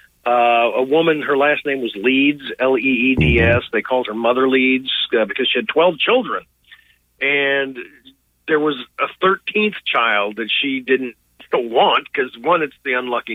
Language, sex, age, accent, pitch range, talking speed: English, male, 50-69, American, 120-150 Hz, 155 wpm